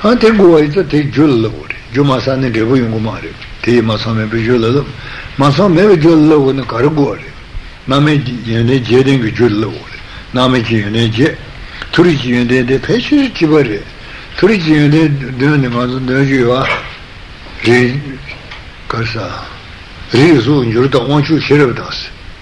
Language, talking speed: Italian, 105 wpm